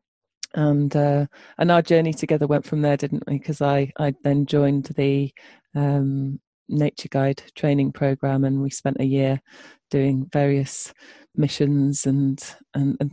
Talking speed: 150 wpm